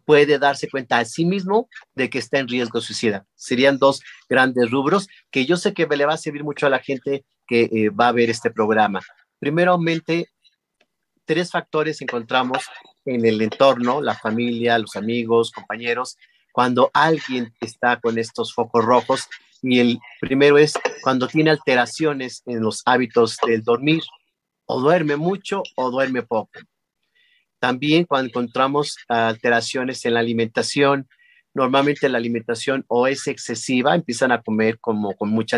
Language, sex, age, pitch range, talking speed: Spanish, male, 40-59, 120-150 Hz, 155 wpm